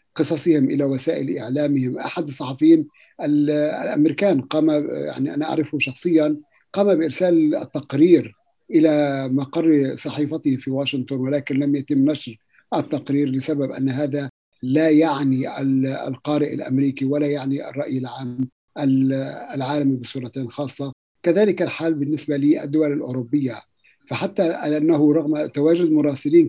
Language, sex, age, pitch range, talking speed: Arabic, male, 50-69, 140-160 Hz, 110 wpm